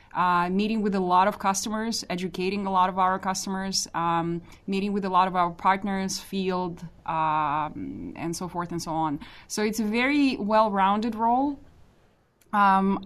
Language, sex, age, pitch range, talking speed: English, female, 20-39, 170-195 Hz, 165 wpm